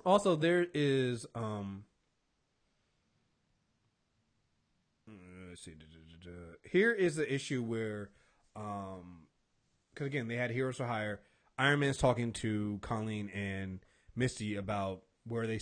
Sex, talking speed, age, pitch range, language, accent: male, 110 wpm, 30-49, 110-145 Hz, English, American